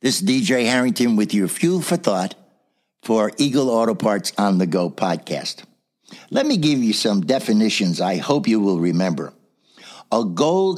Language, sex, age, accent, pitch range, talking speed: English, male, 60-79, American, 130-210 Hz, 165 wpm